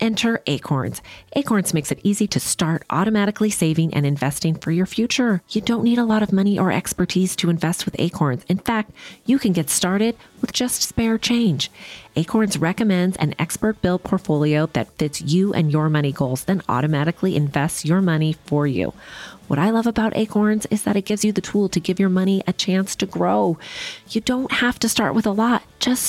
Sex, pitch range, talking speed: female, 145-200 Hz, 200 wpm